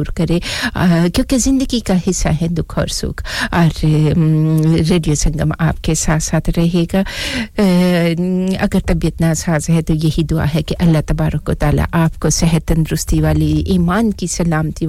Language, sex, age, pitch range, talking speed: English, female, 50-69, 160-180 Hz, 140 wpm